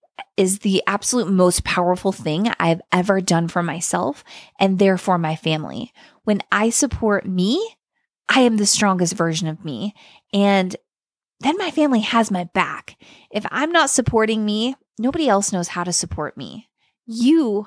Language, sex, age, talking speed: English, female, 20-39, 155 wpm